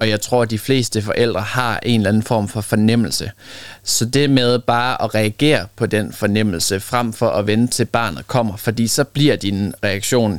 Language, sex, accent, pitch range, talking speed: Danish, male, native, 105-130 Hz, 200 wpm